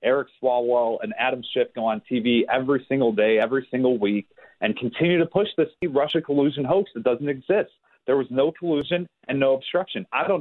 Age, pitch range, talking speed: 30-49, 125-160 Hz, 195 wpm